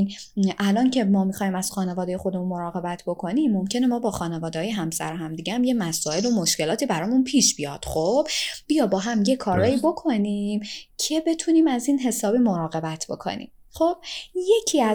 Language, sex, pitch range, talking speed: Persian, female, 185-255 Hz, 160 wpm